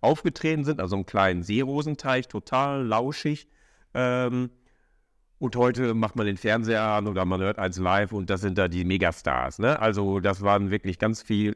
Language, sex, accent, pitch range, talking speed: German, male, German, 95-115 Hz, 175 wpm